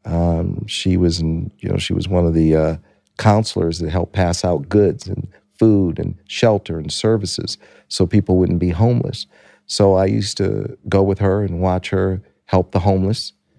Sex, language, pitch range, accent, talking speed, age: male, English, 85-105 Hz, American, 185 wpm, 50-69